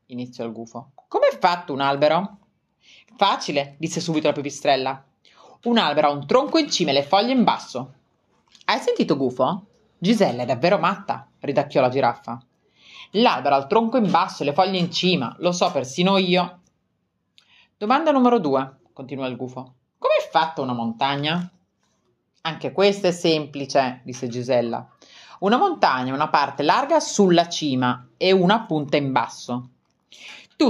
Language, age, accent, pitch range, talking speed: Italian, 30-49, native, 135-210 Hz, 160 wpm